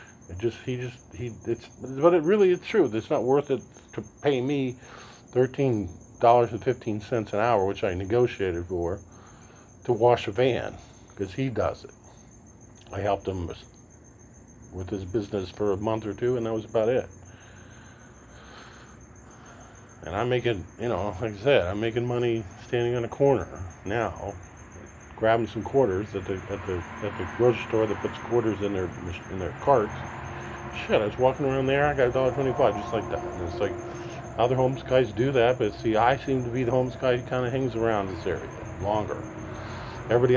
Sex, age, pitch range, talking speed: male, 50-69, 100-120 Hz, 185 wpm